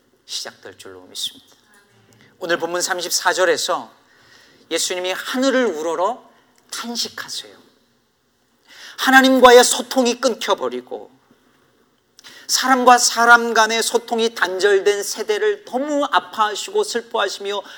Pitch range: 180-260 Hz